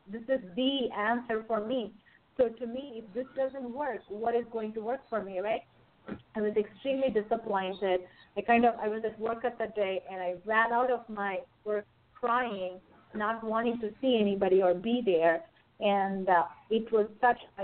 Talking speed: 190 wpm